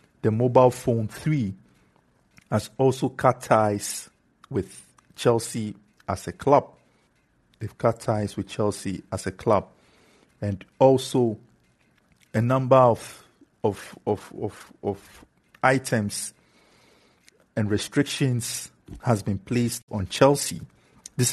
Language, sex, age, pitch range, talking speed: English, male, 50-69, 105-130 Hz, 110 wpm